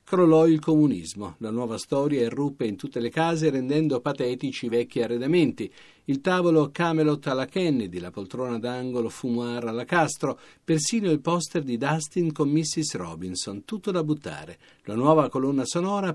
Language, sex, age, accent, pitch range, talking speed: Italian, male, 50-69, native, 120-160 Hz, 155 wpm